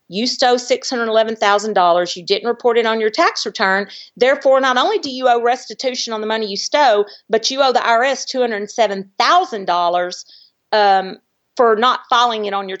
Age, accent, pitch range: 50-69, American, 200-260 Hz